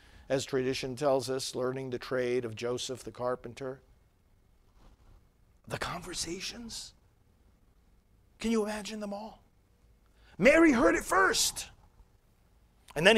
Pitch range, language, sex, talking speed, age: 115-170 Hz, English, male, 110 wpm, 50-69